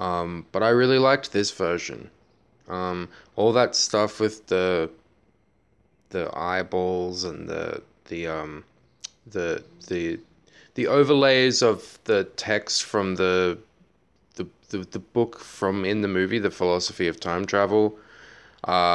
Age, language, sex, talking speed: 20-39, English, male, 135 wpm